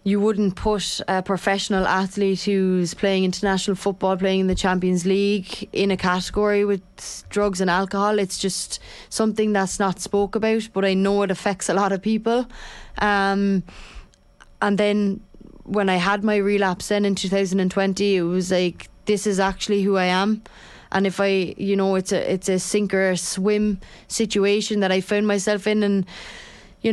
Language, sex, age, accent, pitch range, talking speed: English, female, 20-39, Irish, 195-210 Hz, 175 wpm